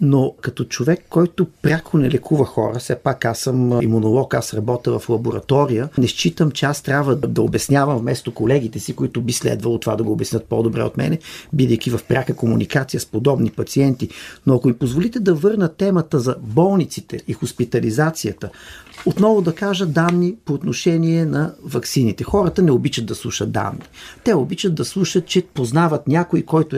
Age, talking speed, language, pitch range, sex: 40-59, 175 wpm, Bulgarian, 125-165 Hz, male